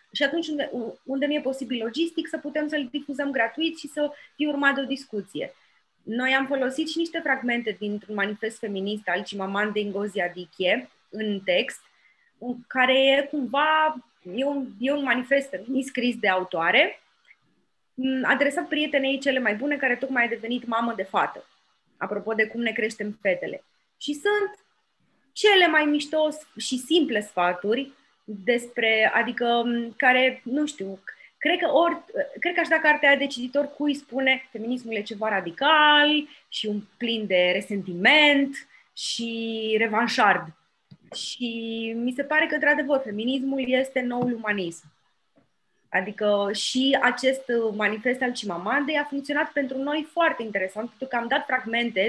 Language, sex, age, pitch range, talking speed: Romanian, female, 20-39, 220-285 Hz, 150 wpm